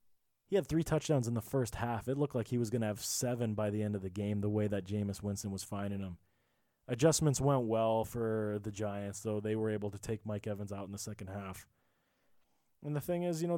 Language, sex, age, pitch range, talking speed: English, male, 20-39, 105-140 Hz, 245 wpm